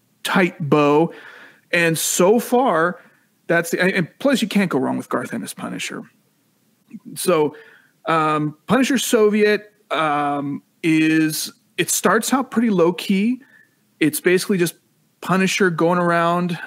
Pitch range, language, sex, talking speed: 145-185 Hz, English, male, 125 wpm